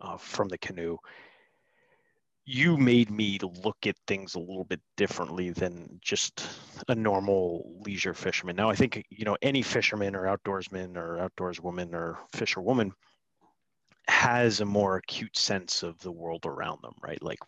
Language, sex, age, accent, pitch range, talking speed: English, male, 30-49, American, 90-115 Hz, 160 wpm